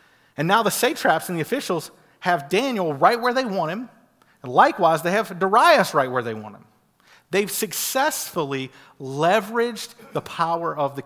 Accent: American